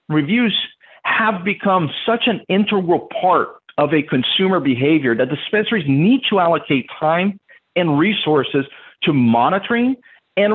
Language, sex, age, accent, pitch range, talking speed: English, male, 50-69, American, 145-210 Hz, 125 wpm